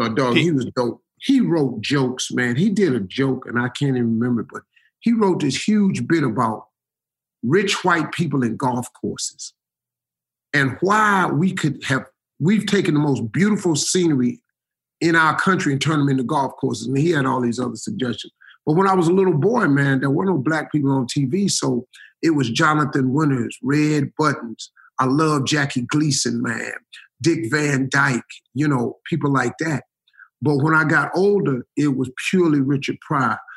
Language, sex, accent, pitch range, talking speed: English, male, American, 125-155 Hz, 185 wpm